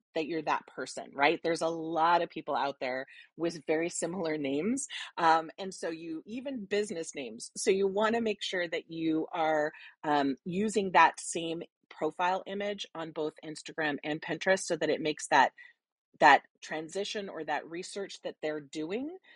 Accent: American